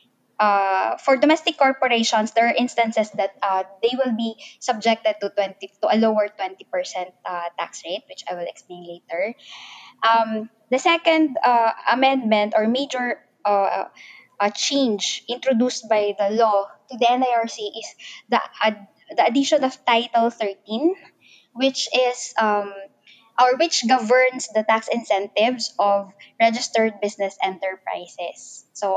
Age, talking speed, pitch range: 20-39, 140 wpm, 200-255 Hz